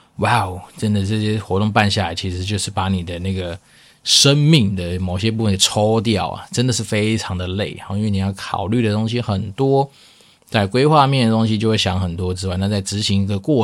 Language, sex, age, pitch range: Chinese, male, 20-39, 95-110 Hz